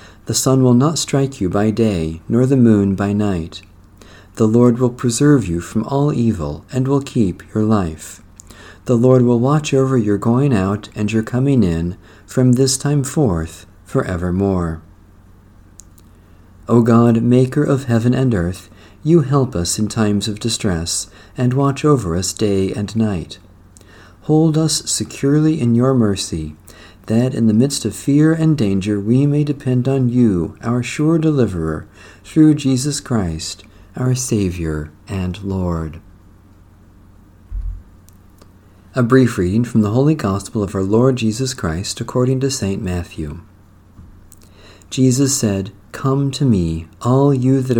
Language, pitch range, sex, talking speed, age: English, 95-125 Hz, male, 145 wpm, 50-69